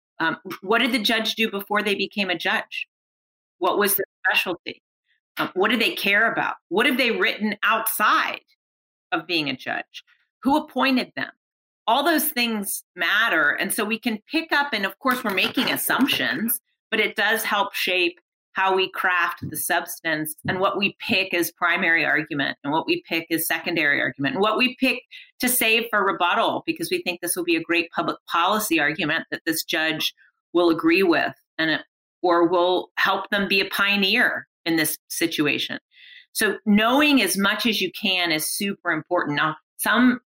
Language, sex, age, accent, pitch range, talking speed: English, female, 40-59, American, 175-255 Hz, 180 wpm